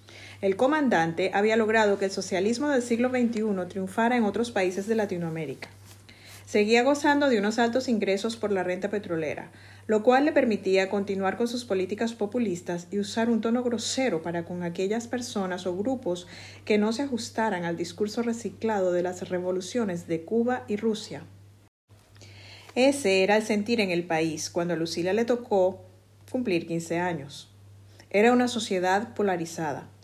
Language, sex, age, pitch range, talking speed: Spanish, female, 50-69, 175-225 Hz, 160 wpm